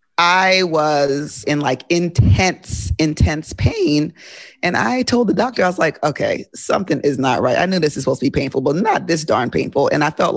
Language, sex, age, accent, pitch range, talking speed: English, female, 30-49, American, 140-180 Hz, 210 wpm